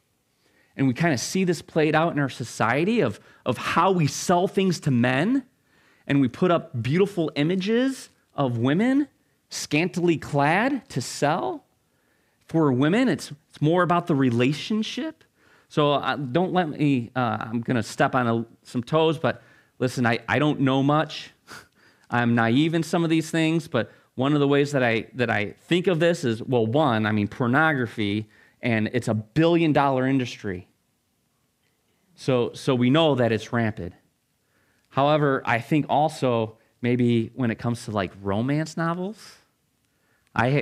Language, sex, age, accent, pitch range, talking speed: English, male, 30-49, American, 120-170 Hz, 160 wpm